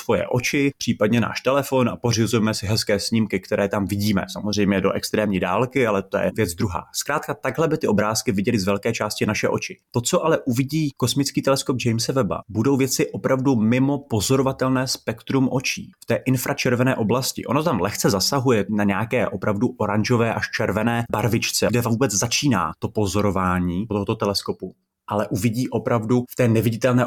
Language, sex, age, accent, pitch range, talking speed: Czech, male, 30-49, native, 105-130 Hz, 170 wpm